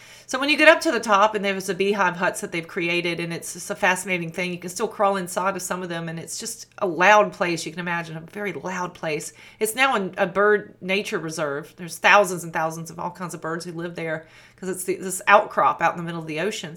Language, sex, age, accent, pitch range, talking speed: English, female, 40-59, American, 170-205 Hz, 260 wpm